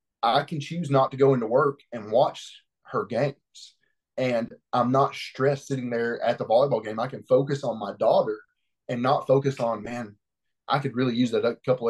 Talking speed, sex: 200 wpm, male